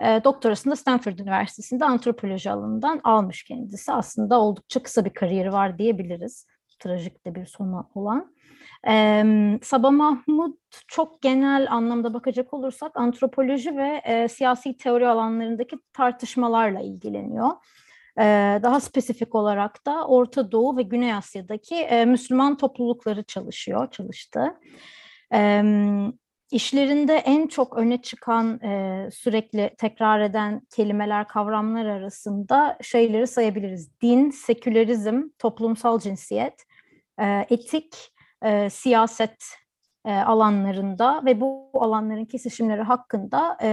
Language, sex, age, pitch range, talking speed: English, female, 30-49, 210-260 Hz, 105 wpm